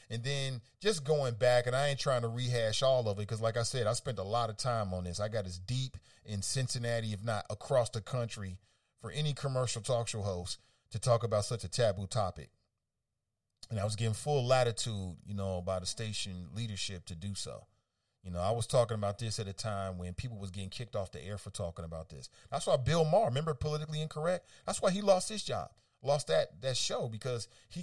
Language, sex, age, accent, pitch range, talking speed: English, male, 40-59, American, 105-145 Hz, 230 wpm